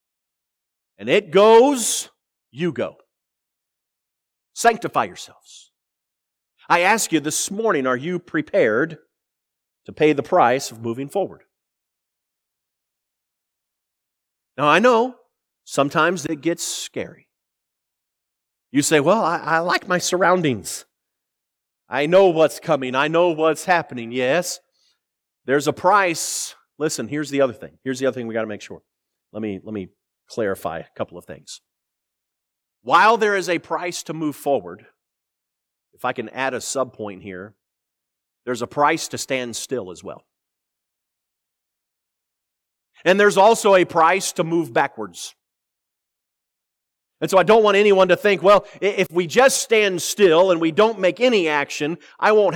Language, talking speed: English, 145 wpm